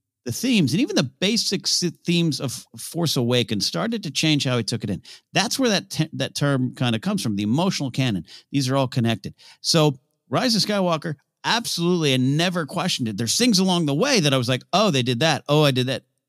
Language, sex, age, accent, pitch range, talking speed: English, male, 40-59, American, 115-150 Hz, 225 wpm